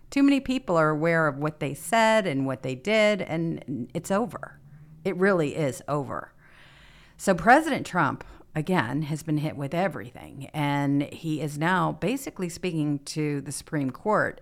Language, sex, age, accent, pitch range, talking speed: English, female, 50-69, American, 135-185 Hz, 160 wpm